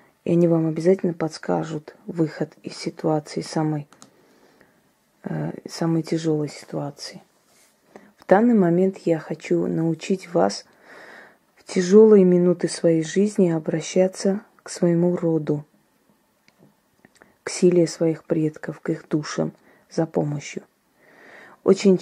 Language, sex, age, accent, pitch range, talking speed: Russian, female, 20-39, native, 160-185 Hz, 105 wpm